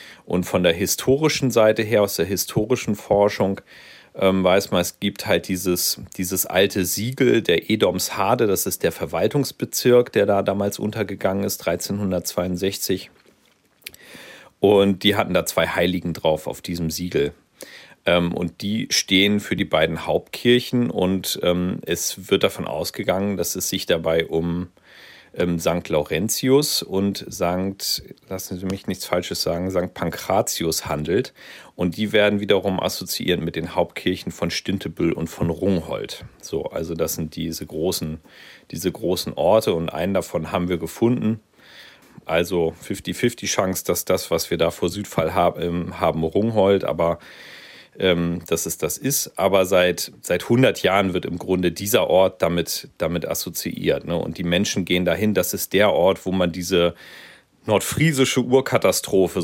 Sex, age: male, 40-59